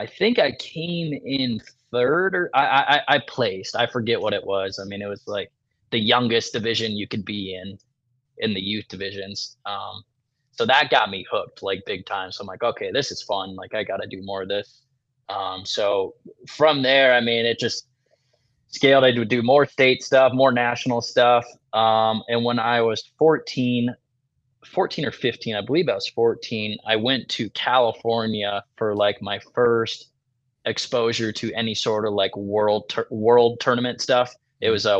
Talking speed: 190 wpm